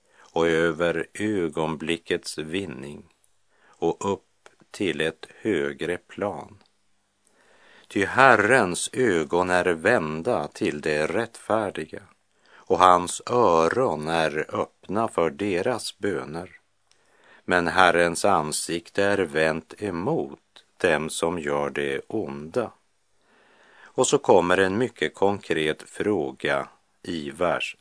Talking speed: 100 wpm